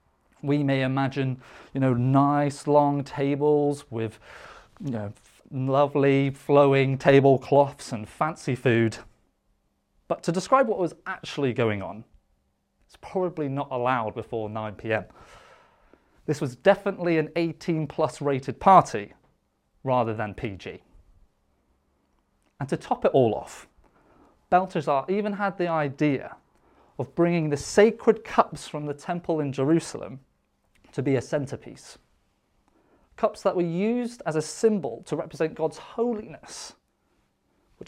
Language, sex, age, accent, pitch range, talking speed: English, male, 30-49, British, 125-170 Hz, 120 wpm